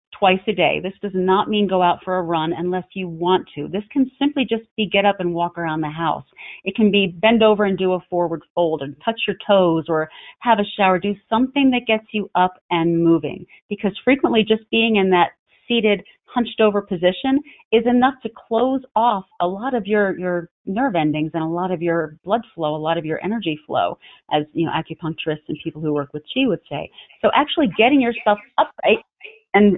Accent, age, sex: American, 30-49, female